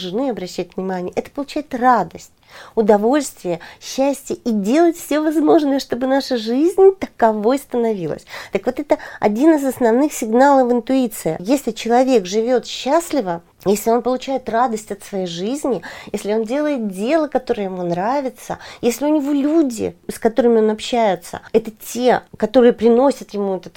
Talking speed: 140 wpm